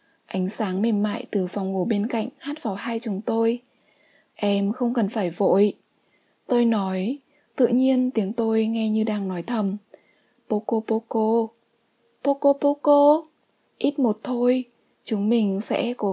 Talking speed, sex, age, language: 155 wpm, female, 20-39, Vietnamese